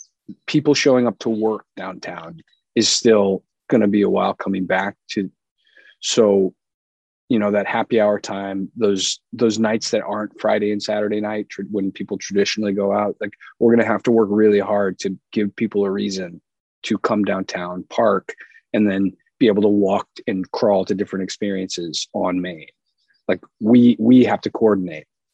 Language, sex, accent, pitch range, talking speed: English, male, American, 100-120 Hz, 175 wpm